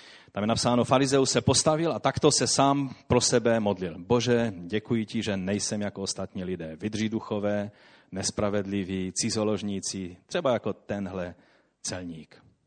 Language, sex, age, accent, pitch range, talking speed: Czech, male, 30-49, native, 95-115 Hz, 135 wpm